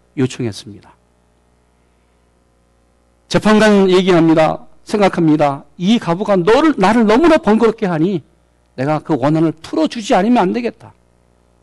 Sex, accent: male, native